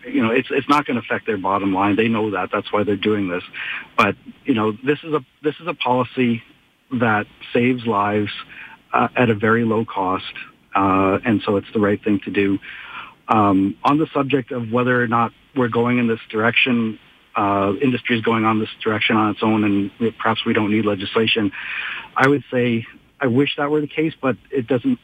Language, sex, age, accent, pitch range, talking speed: English, male, 50-69, American, 105-120 Hz, 210 wpm